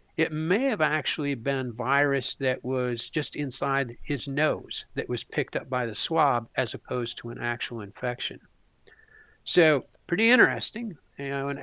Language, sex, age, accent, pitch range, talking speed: English, male, 50-69, American, 125-155 Hz, 150 wpm